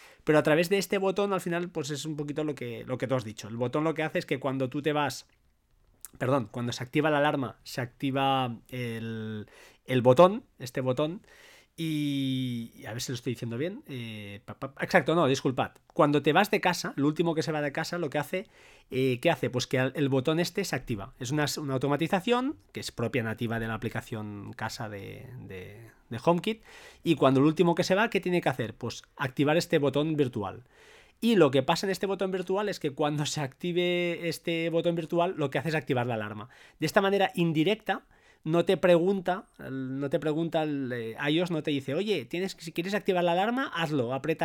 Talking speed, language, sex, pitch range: 220 wpm, Spanish, male, 130-175 Hz